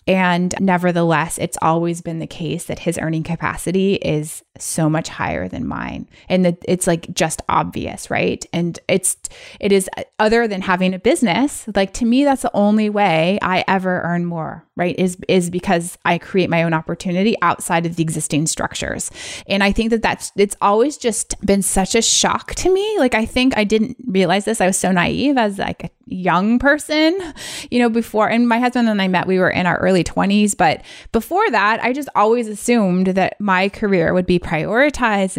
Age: 20-39